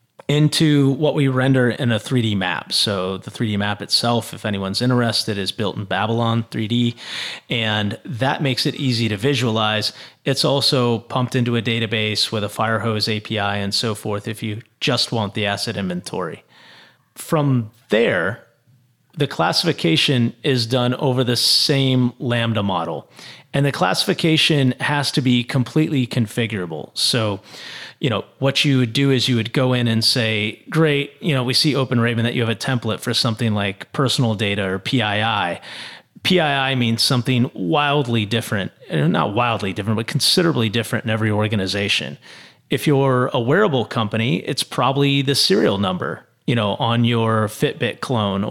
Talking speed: 160 wpm